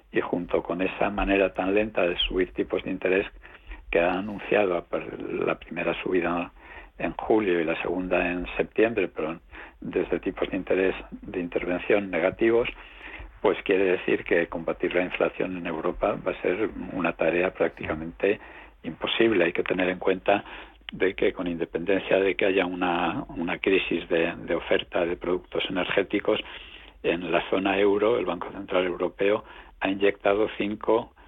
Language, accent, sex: Spanish, Spanish, male